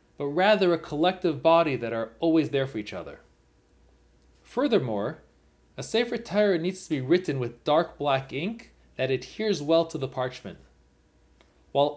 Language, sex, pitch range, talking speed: English, male, 120-180 Hz, 155 wpm